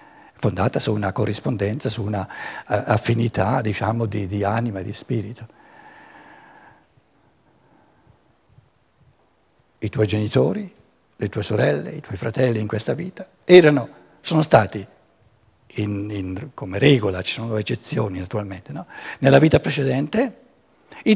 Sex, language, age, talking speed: male, Italian, 60-79, 120 wpm